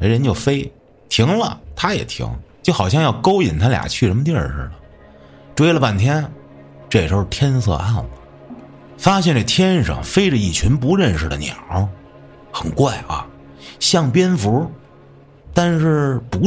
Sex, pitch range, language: male, 80-135 Hz, Chinese